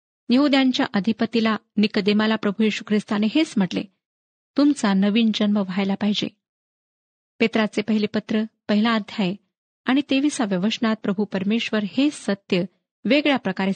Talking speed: 115 wpm